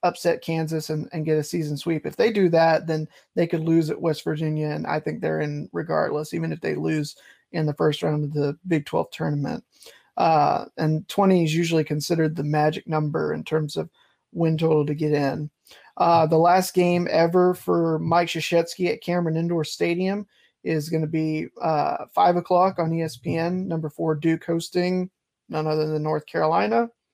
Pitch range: 155-180 Hz